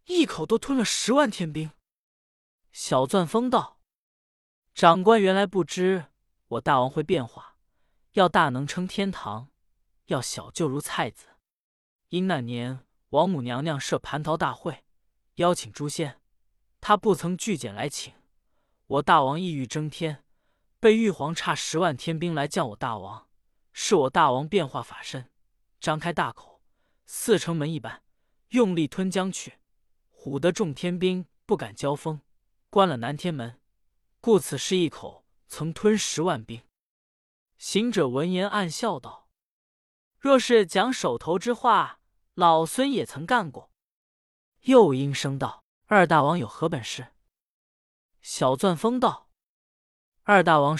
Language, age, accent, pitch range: Chinese, 20-39, native, 135-195 Hz